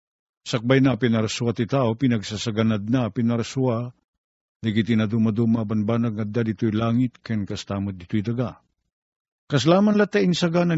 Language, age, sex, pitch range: Filipino, 50-69, male, 115-150 Hz